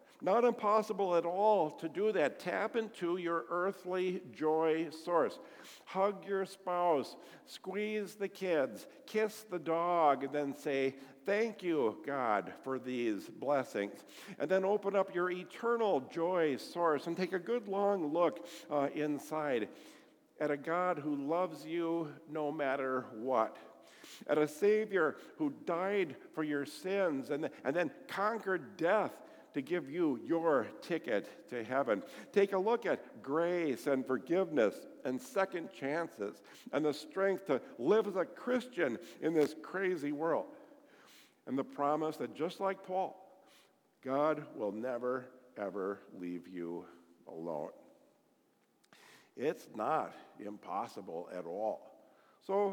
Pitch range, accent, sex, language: 145-195 Hz, American, male, English